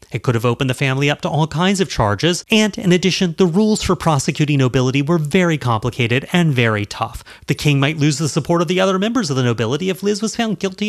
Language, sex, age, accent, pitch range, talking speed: English, male, 30-49, American, 120-180 Hz, 240 wpm